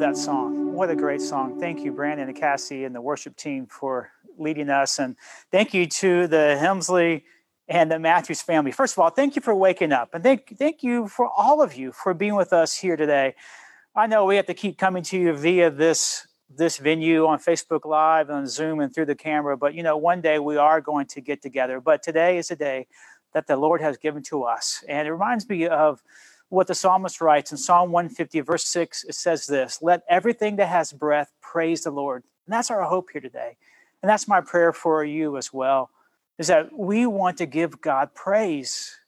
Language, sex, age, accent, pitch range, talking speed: English, male, 40-59, American, 150-190 Hz, 220 wpm